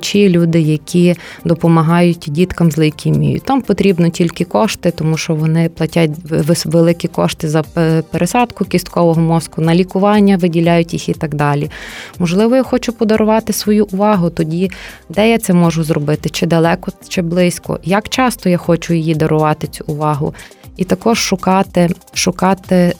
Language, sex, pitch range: Ukrainian, female, 165-195 Hz